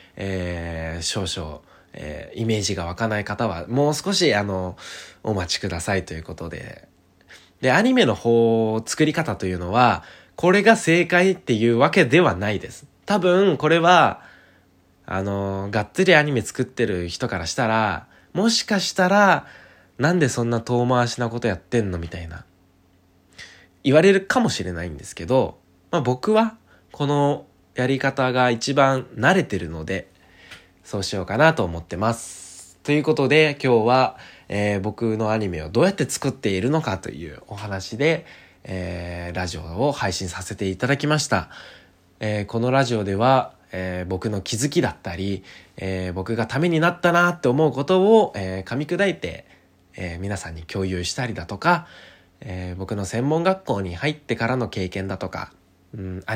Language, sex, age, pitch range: Japanese, male, 20-39, 90-140 Hz